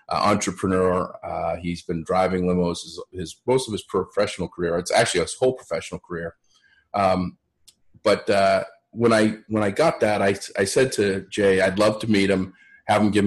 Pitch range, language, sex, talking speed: 90-110 Hz, English, male, 190 wpm